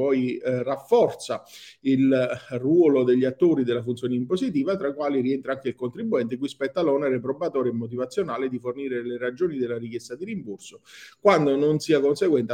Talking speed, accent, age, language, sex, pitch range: 170 wpm, native, 50-69, Italian, male, 125-155 Hz